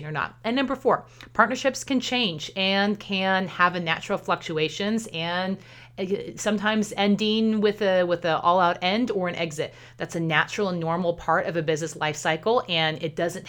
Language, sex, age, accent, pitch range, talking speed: English, female, 30-49, American, 160-205 Hz, 180 wpm